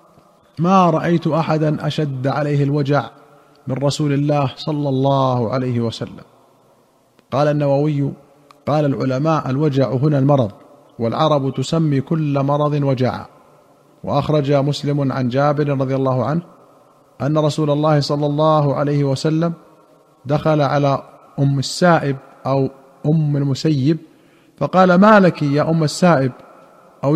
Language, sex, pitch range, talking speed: Arabic, male, 135-155 Hz, 115 wpm